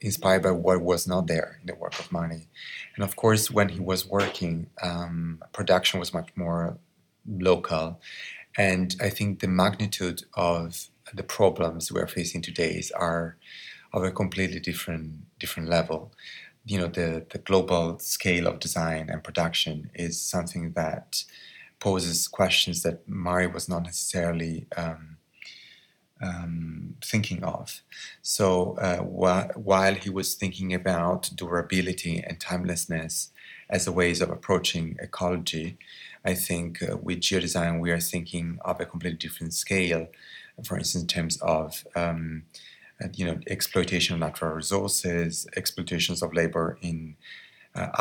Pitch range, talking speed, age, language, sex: 85-95 Hz, 140 wpm, 30-49, English, male